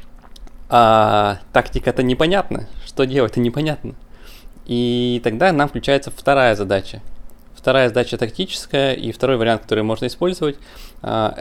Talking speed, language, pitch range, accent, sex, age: 110 wpm, Russian, 105-130 Hz, native, male, 20-39